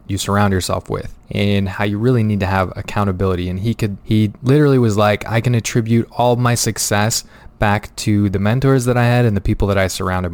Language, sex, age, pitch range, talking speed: English, male, 20-39, 100-115 Hz, 215 wpm